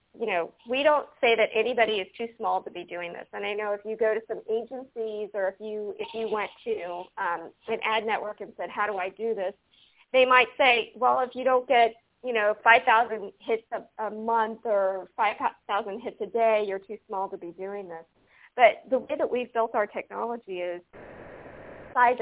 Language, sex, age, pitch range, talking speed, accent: English, female, 40-59, 190-235 Hz, 210 wpm, American